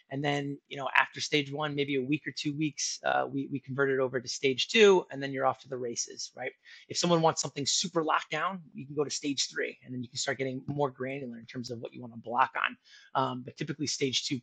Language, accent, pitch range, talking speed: English, American, 130-150 Hz, 265 wpm